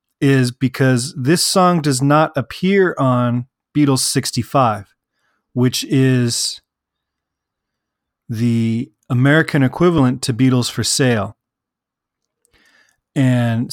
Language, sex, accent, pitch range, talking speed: English, male, American, 120-150 Hz, 85 wpm